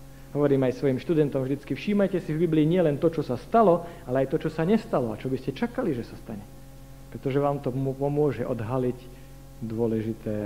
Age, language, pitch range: 50-69, Slovak, 130-160 Hz